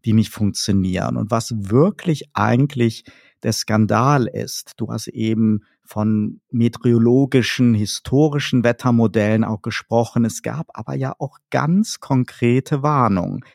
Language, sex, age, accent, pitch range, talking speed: German, male, 50-69, German, 110-150 Hz, 120 wpm